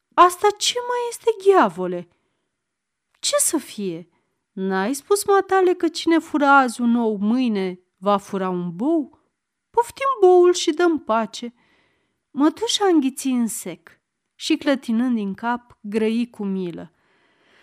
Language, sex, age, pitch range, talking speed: Romanian, female, 30-49, 205-305 Hz, 130 wpm